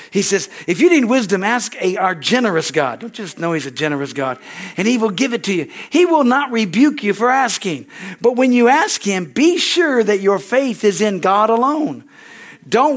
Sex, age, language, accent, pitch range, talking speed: male, 50-69, English, American, 185-240 Hz, 215 wpm